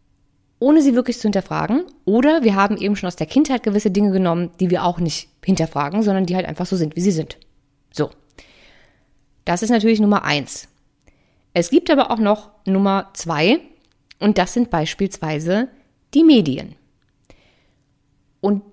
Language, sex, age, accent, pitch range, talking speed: German, female, 20-39, German, 175-250 Hz, 160 wpm